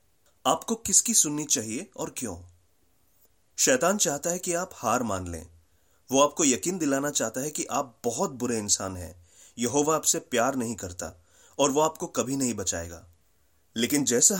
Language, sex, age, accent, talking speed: Hindi, male, 30-49, native, 165 wpm